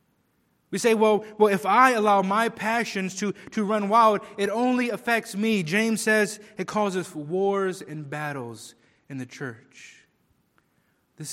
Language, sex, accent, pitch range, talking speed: English, male, American, 145-215 Hz, 150 wpm